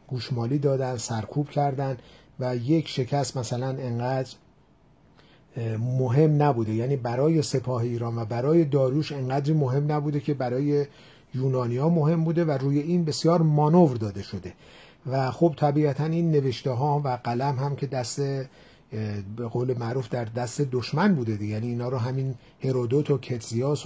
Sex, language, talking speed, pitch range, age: male, Persian, 150 wpm, 120-150 Hz, 50-69